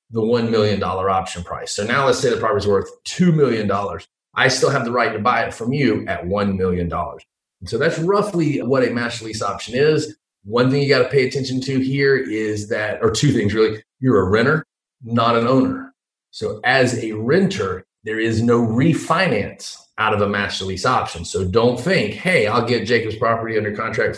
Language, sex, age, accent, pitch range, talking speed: English, male, 30-49, American, 100-130 Hz, 210 wpm